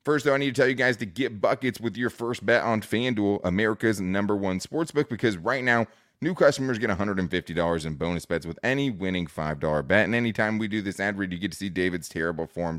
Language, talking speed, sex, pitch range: English, 235 wpm, male, 95-125 Hz